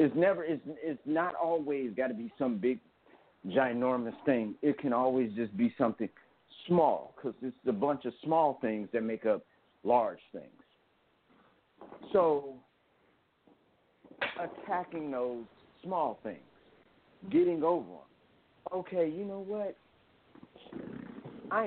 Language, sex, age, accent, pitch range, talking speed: English, male, 50-69, American, 125-180 Hz, 120 wpm